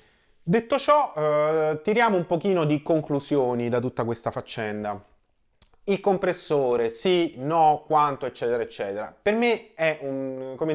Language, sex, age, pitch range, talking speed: Italian, male, 30-49, 125-160 Hz, 135 wpm